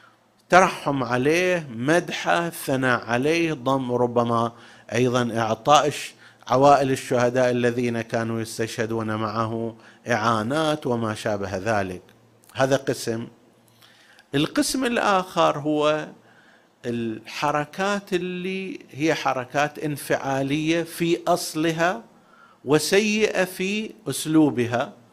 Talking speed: 80 wpm